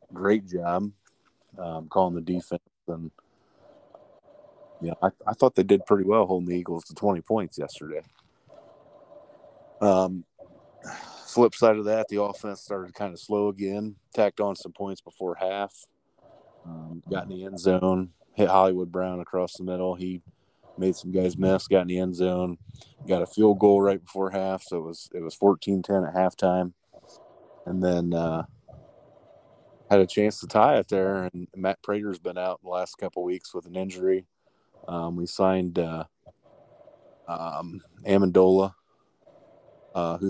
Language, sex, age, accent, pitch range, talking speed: English, male, 30-49, American, 90-100 Hz, 160 wpm